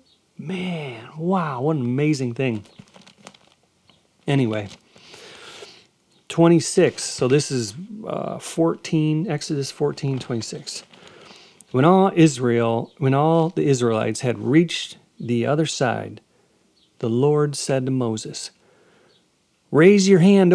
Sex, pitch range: male, 125-175 Hz